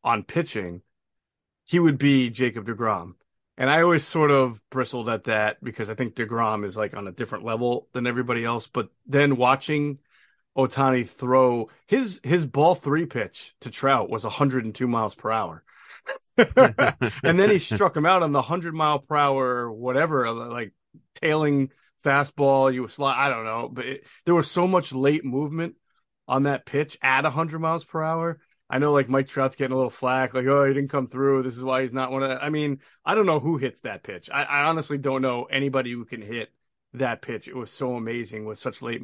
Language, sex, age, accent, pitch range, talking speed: English, male, 30-49, American, 125-155 Hz, 200 wpm